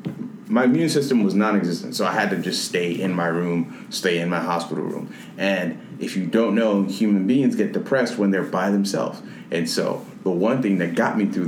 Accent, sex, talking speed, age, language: American, male, 215 wpm, 30-49, English